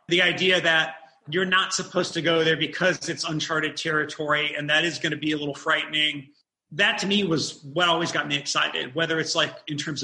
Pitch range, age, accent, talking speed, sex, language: 150-180 Hz, 30-49, American, 215 wpm, male, English